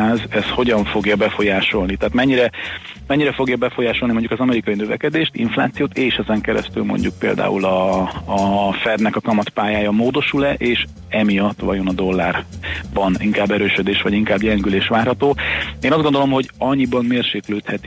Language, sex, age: Hungarian, male, 30-49